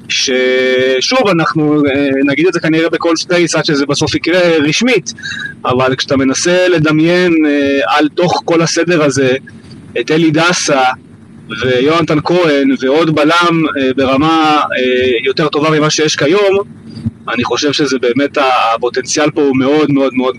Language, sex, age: Hebrew, male, 30-49